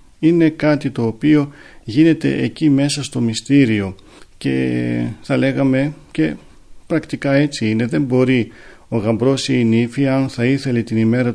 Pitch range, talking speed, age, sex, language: 110-140 Hz, 150 wpm, 40-59, male, Greek